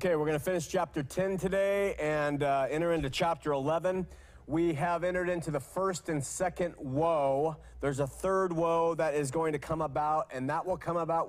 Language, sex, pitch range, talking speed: English, male, 150-180 Hz, 200 wpm